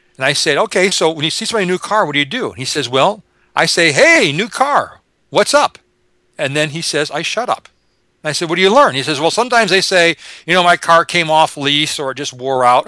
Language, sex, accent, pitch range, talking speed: English, male, American, 145-195 Hz, 280 wpm